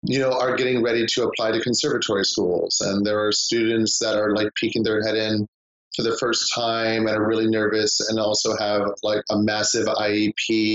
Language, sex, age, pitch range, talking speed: English, male, 30-49, 100-110 Hz, 200 wpm